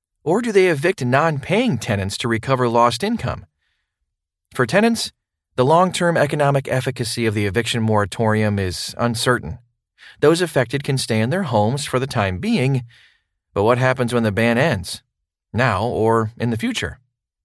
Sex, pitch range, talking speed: male, 105-140 Hz, 155 wpm